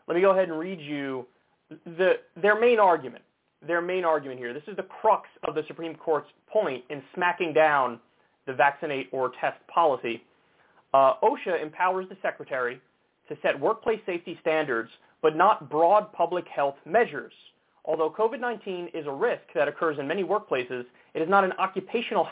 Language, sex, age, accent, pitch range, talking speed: English, male, 30-49, American, 150-200 Hz, 165 wpm